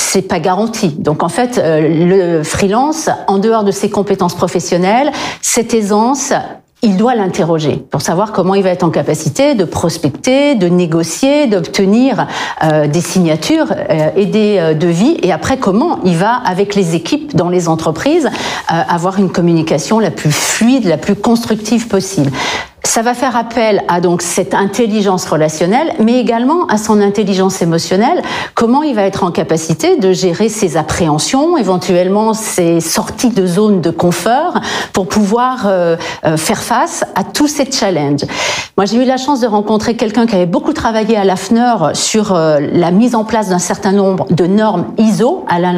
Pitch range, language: 175-235 Hz, French